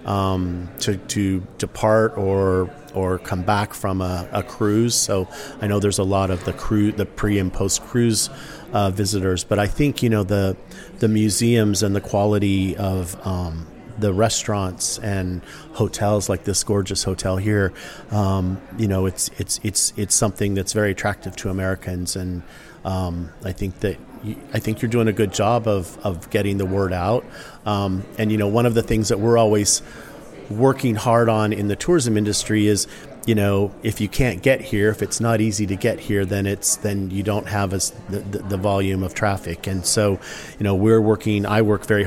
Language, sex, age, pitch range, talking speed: English, male, 40-59, 95-110 Hz, 195 wpm